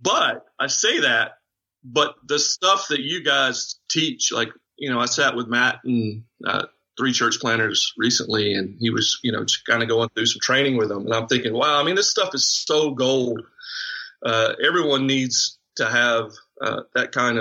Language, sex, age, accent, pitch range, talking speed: English, male, 40-59, American, 110-135 Hz, 195 wpm